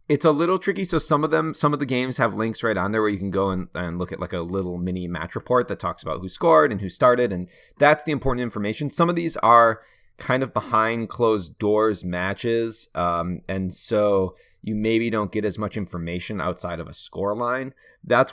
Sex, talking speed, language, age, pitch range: male, 230 wpm, English, 20-39, 90-120 Hz